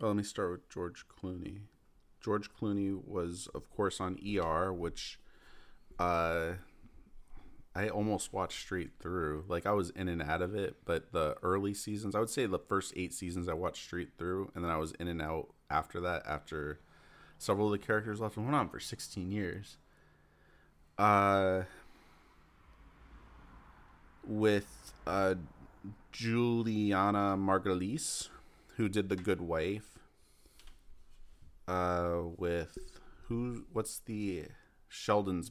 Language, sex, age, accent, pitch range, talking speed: English, male, 30-49, American, 85-105 Hz, 135 wpm